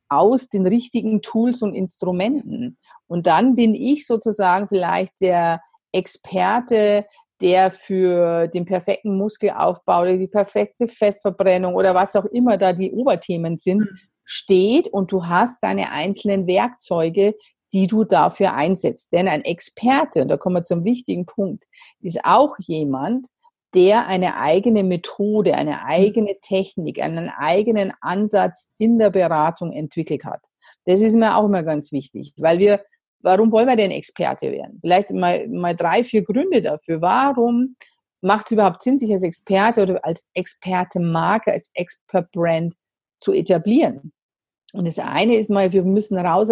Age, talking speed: 40-59, 150 wpm